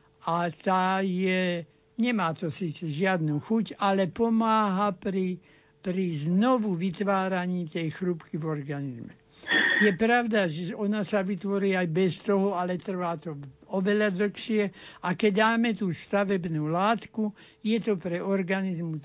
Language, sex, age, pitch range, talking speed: Slovak, male, 60-79, 165-200 Hz, 130 wpm